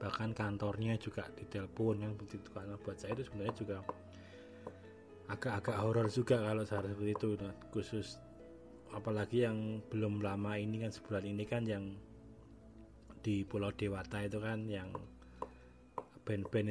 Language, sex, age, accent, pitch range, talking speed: Indonesian, male, 20-39, native, 100-110 Hz, 130 wpm